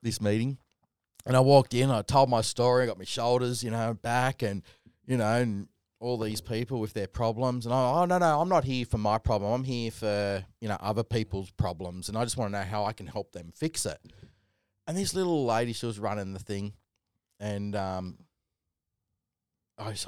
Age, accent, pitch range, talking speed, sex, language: 30-49, Australian, 105-140 Hz, 210 wpm, male, English